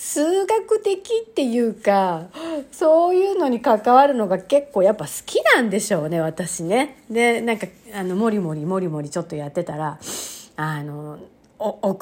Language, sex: Japanese, female